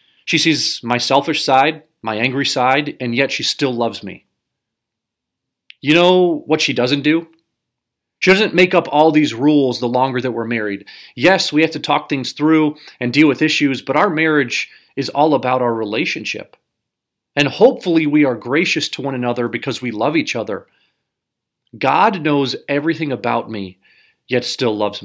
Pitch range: 125-155 Hz